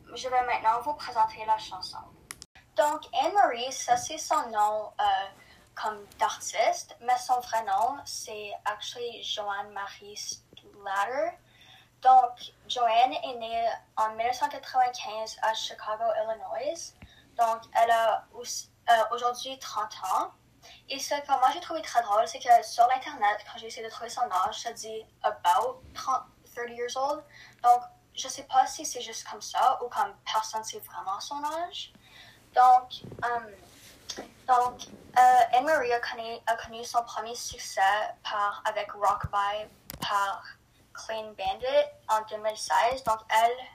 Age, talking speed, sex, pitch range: 10-29, 150 wpm, female, 215-295 Hz